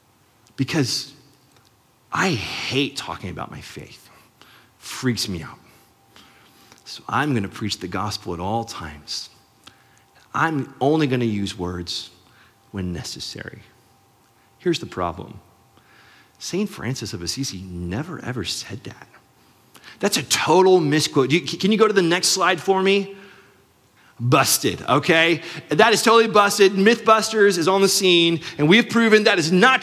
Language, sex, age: English, male, 30-49